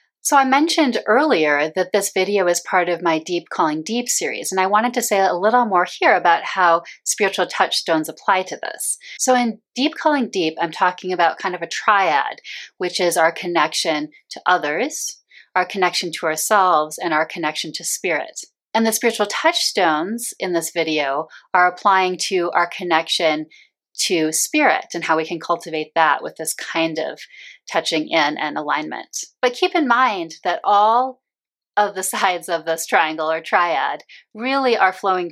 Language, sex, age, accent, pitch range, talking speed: English, female, 30-49, American, 160-210 Hz, 175 wpm